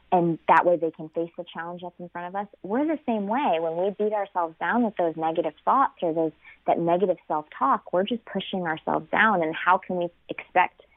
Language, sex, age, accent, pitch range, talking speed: English, female, 20-39, American, 160-185 Hz, 225 wpm